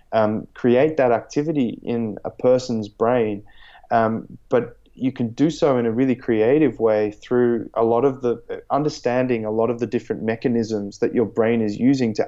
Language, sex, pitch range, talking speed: English, male, 110-125 Hz, 185 wpm